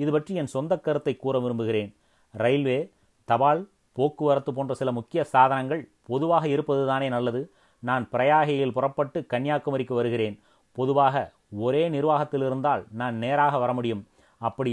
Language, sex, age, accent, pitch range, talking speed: Tamil, male, 30-49, native, 120-145 Hz, 130 wpm